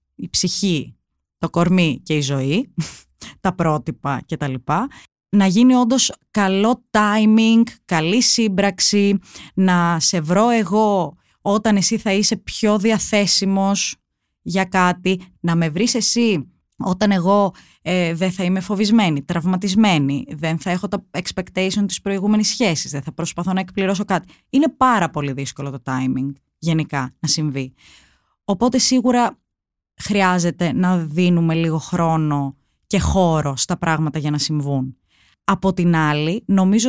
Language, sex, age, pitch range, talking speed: Greek, female, 20-39, 155-205 Hz, 135 wpm